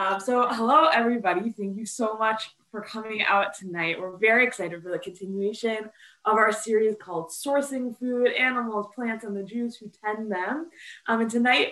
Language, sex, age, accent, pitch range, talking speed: English, female, 20-39, American, 205-245 Hz, 180 wpm